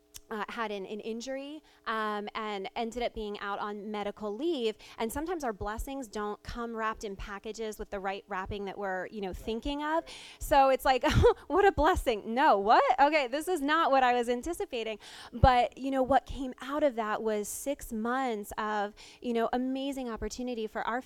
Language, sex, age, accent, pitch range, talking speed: English, female, 20-39, American, 210-255 Hz, 190 wpm